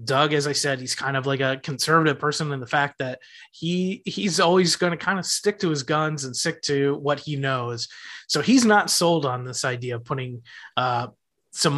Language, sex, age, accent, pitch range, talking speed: English, male, 20-39, American, 135-160 Hz, 220 wpm